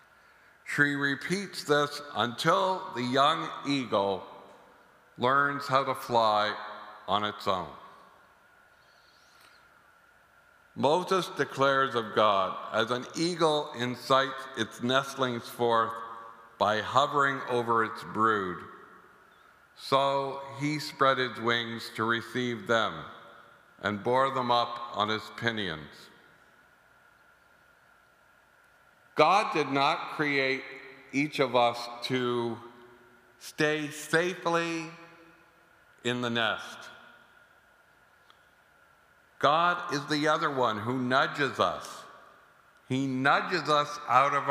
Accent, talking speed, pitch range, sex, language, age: American, 95 wpm, 120-170 Hz, male, English, 60-79